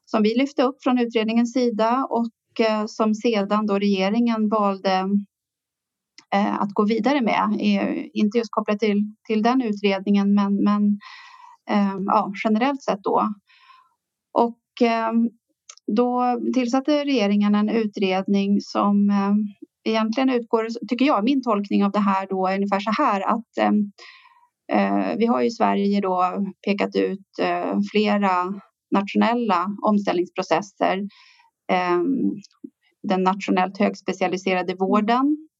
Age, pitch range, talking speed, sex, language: 30-49, 200-250 Hz, 120 wpm, female, Swedish